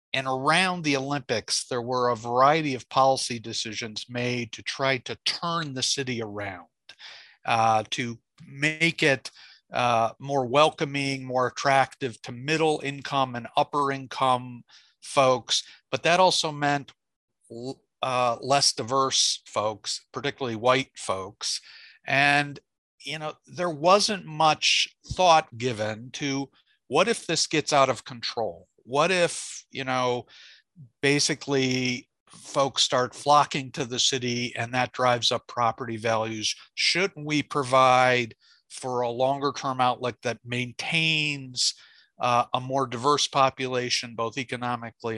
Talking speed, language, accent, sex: 125 wpm, English, American, male